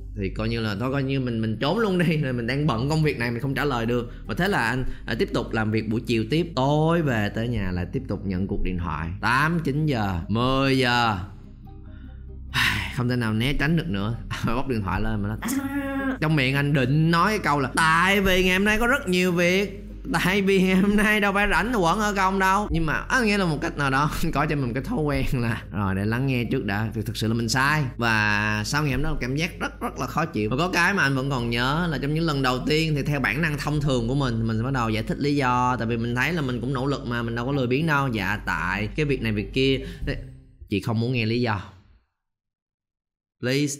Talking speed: 265 wpm